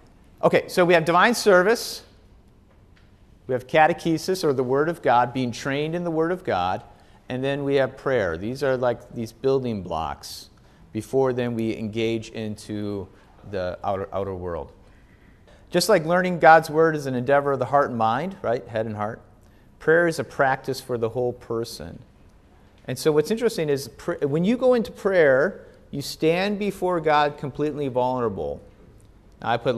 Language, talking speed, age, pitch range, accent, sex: English, 170 wpm, 40-59, 95-140 Hz, American, male